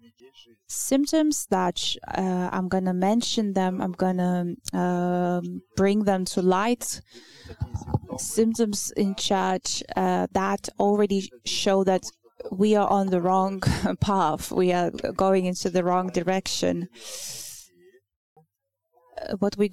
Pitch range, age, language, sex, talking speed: 175-215 Hz, 20-39, English, female, 115 wpm